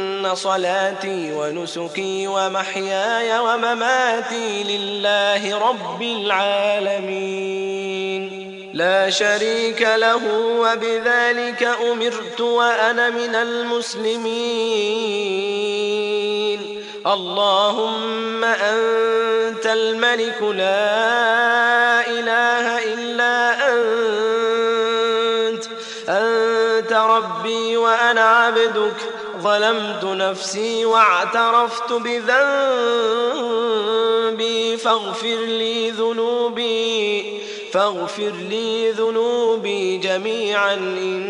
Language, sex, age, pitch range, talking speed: Arabic, male, 20-39, 195-230 Hz, 55 wpm